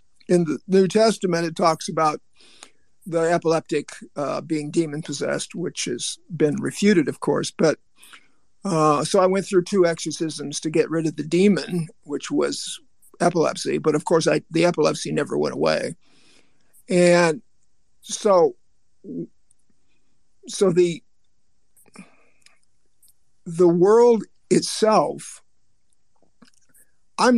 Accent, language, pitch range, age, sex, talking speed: American, English, 155-185 Hz, 50-69, male, 115 wpm